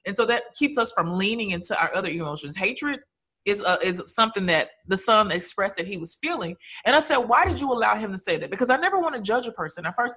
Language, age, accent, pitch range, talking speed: English, 20-39, American, 165-240 Hz, 265 wpm